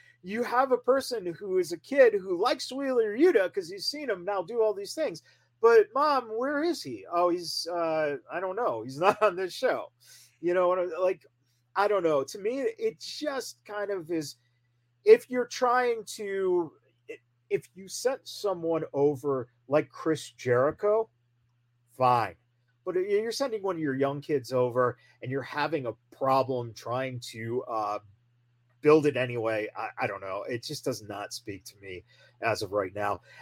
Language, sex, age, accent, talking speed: English, male, 40-59, American, 185 wpm